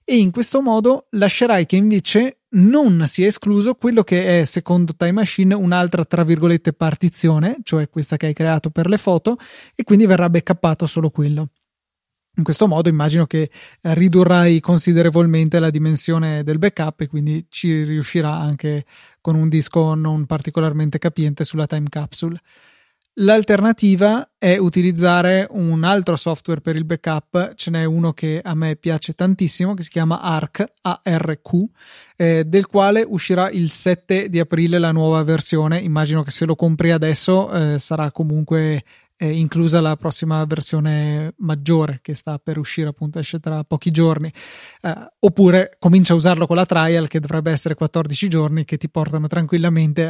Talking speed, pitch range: 160 wpm, 155-180 Hz